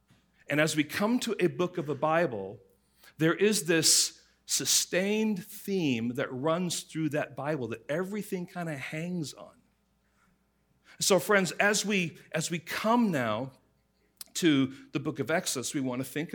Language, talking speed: English, 160 wpm